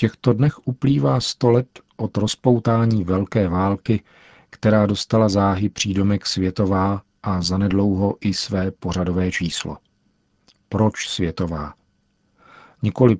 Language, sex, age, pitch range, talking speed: Czech, male, 50-69, 90-105 Hz, 110 wpm